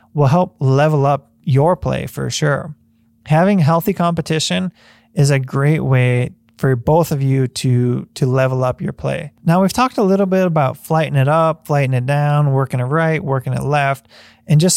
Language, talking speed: English, 185 wpm